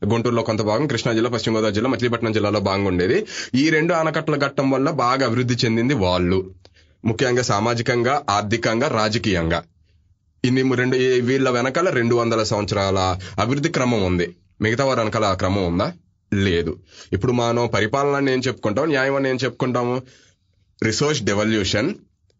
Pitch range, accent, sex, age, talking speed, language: 105-140 Hz, native, male, 30-49, 140 wpm, Telugu